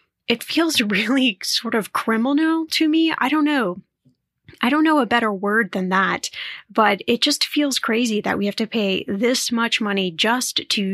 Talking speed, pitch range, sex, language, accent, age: 185 wpm, 200-245 Hz, female, English, American, 10-29